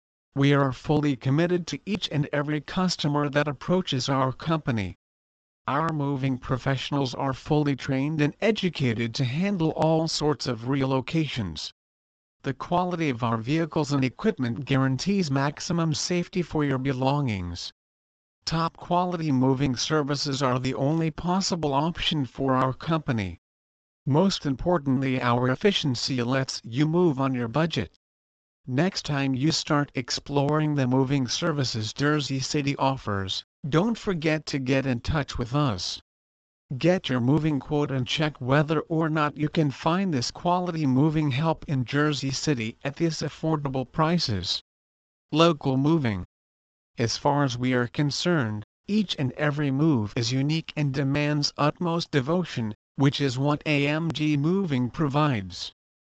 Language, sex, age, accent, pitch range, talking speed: English, male, 50-69, American, 125-155 Hz, 135 wpm